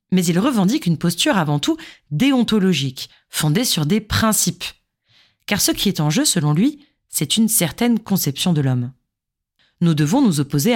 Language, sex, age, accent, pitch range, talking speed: French, female, 30-49, French, 145-220 Hz, 165 wpm